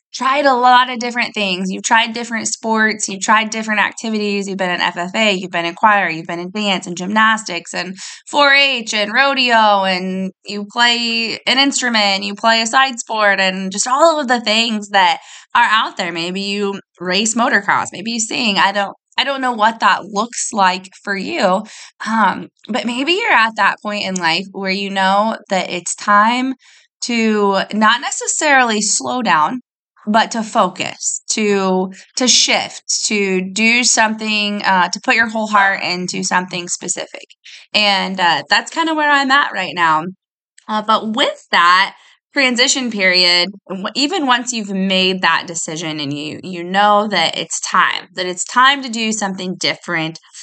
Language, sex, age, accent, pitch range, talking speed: English, female, 20-39, American, 185-240 Hz, 170 wpm